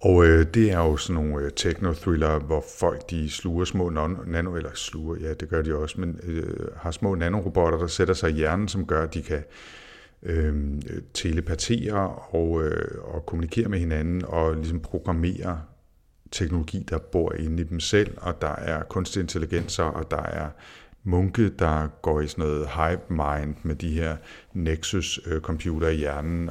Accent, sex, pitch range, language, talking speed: native, male, 80-90 Hz, Danish, 145 wpm